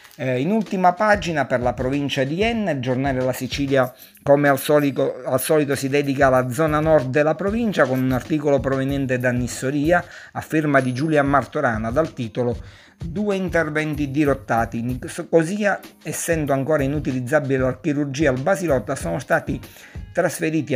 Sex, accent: male, native